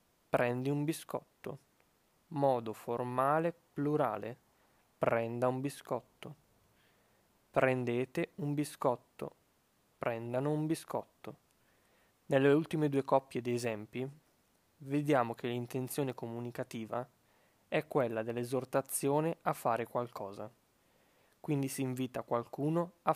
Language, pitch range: Italian, 120-140 Hz